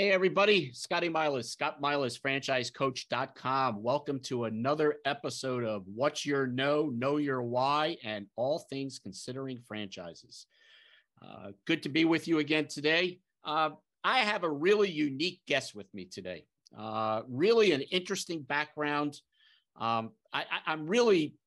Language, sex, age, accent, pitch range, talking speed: English, male, 50-69, American, 120-150 Hz, 135 wpm